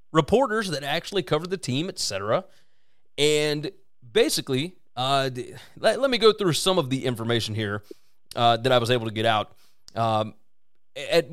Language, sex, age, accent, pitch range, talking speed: English, male, 30-49, American, 120-180 Hz, 165 wpm